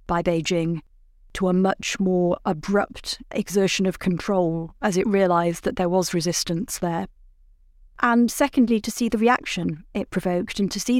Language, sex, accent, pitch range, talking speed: English, female, British, 180-220 Hz, 160 wpm